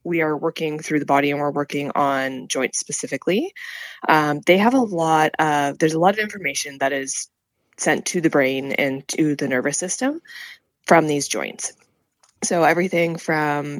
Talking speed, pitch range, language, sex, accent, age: 175 wpm, 135-160 Hz, English, female, American, 20-39